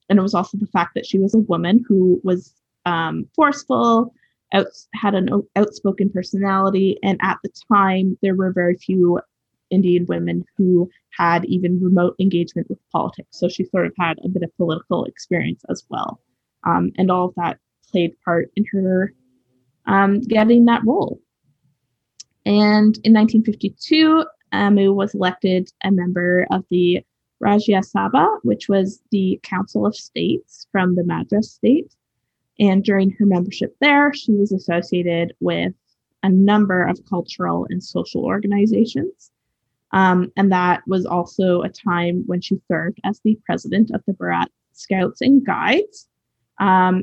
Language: English